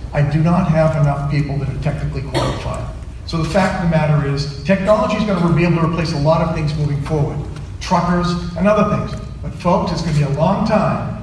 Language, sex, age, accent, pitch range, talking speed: English, male, 40-59, American, 135-170 Hz, 235 wpm